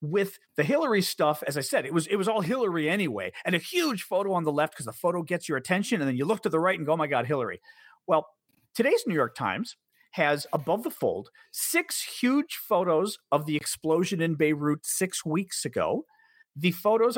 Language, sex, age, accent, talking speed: English, male, 40-59, American, 215 wpm